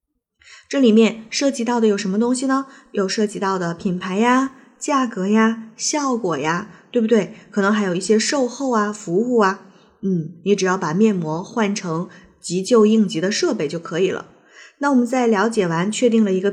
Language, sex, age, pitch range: Chinese, female, 20-39, 190-230 Hz